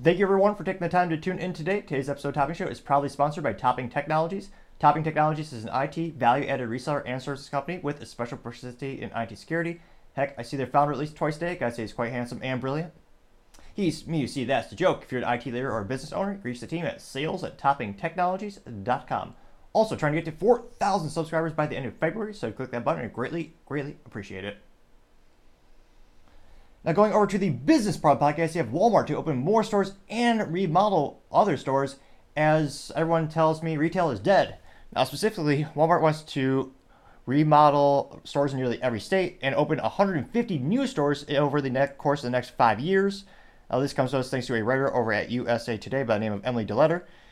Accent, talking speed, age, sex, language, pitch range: American, 215 wpm, 30-49, male, English, 120-165 Hz